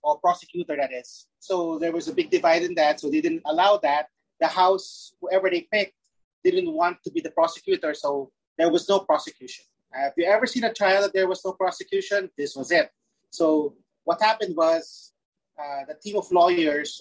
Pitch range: 165-210 Hz